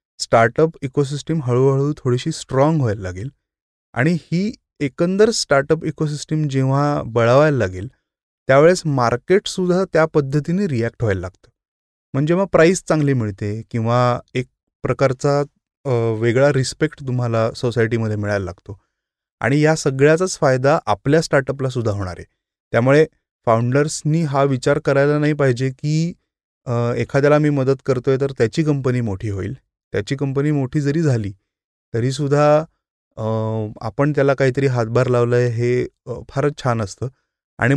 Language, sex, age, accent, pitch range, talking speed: Marathi, male, 30-49, native, 115-150 Hz, 110 wpm